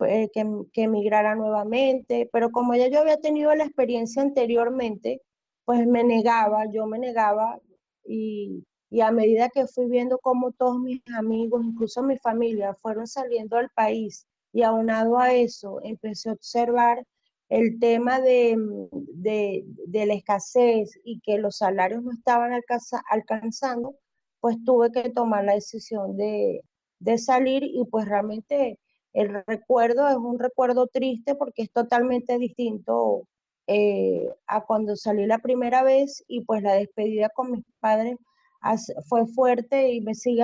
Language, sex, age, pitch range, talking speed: Spanish, female, 30-49, 220-250 Hz, 150 wpm